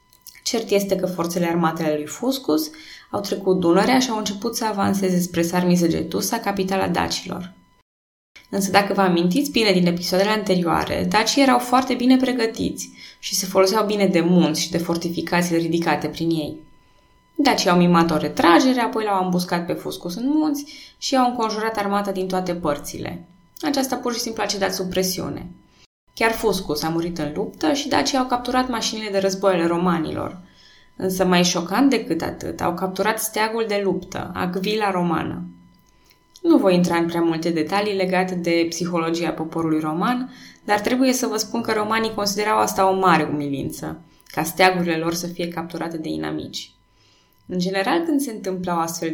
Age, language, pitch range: 20-39, Romanian, 165-215 Hz